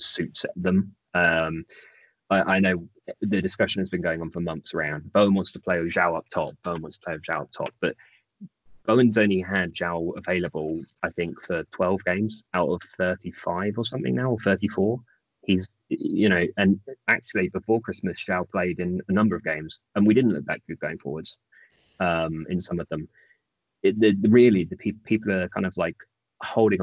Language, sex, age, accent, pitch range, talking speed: English, male, 20-39, British, 85-100 Hz, 195 wpm